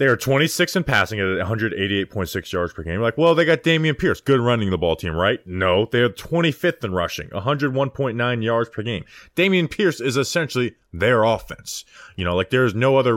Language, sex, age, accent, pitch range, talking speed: English, male, 20-39, American, 95-125 Hz, 205 wpm